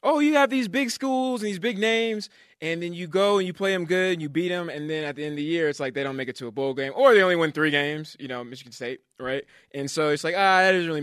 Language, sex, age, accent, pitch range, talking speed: English, male, 20-39, American, 135-180 Hz, 325 wpm